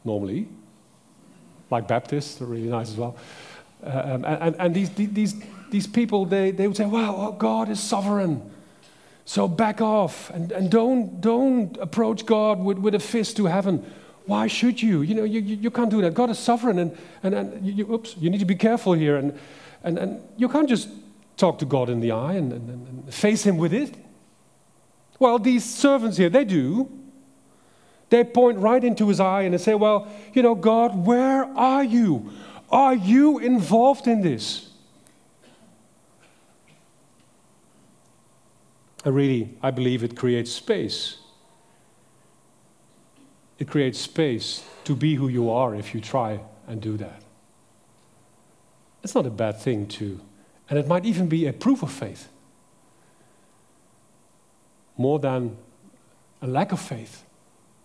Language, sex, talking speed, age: English, male, 160 wpm, 40-59